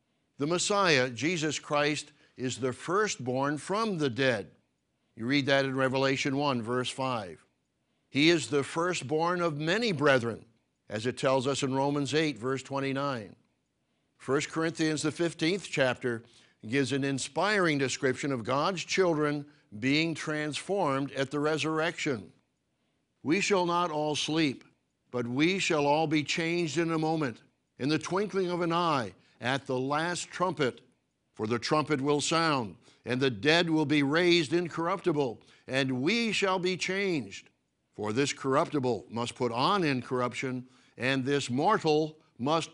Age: 60-79